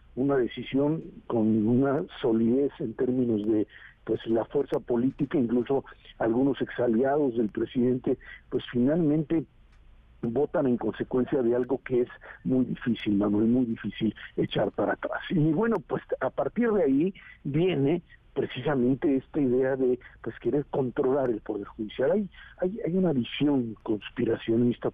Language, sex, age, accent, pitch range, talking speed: Spanish, male, 50-69, Mexican, 115-140 Hz, 140 wpm